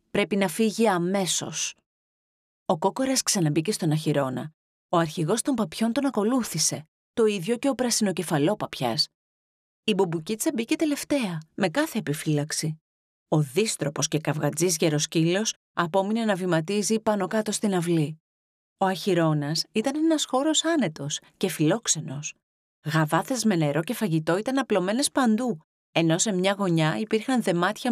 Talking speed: 135 wpm